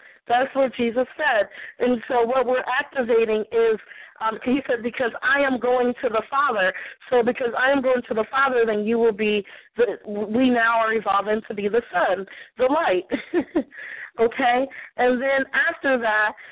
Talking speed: 170 wpm